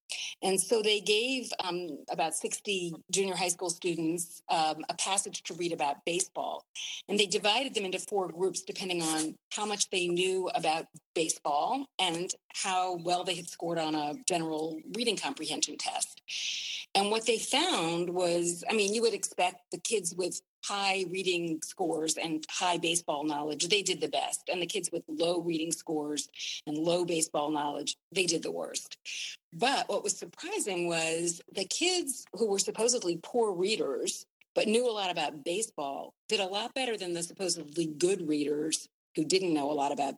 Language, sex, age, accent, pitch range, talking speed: English, female, 40-59, American, 165-210 Hz, 175 wpm